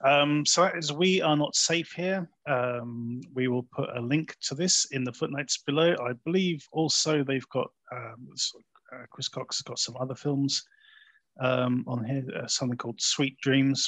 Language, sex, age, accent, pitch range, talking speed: English, male, 30-49, British, 120-155 Hz, 180 wpm